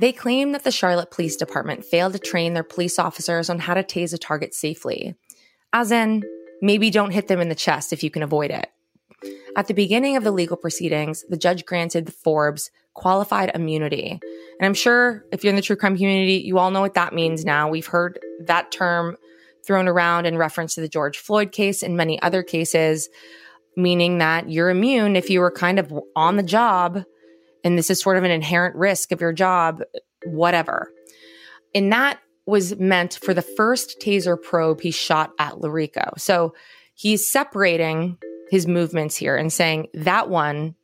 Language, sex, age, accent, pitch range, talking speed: English, female, 20-39, American, 160-195 Hz, 190 wpm